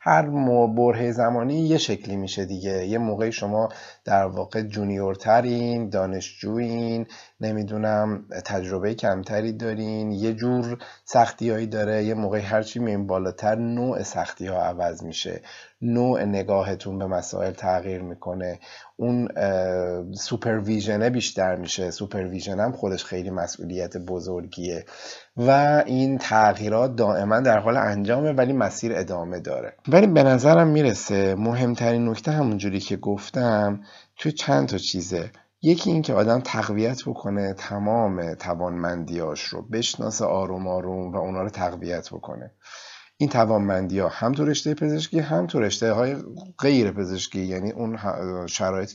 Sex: male